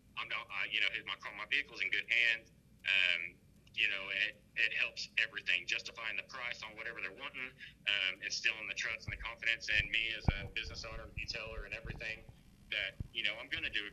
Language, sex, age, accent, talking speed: English, male, 30-49, American, 210 wpm